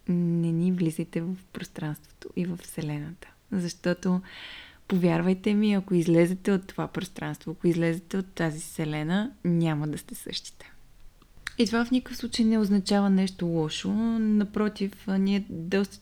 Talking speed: 140 wpm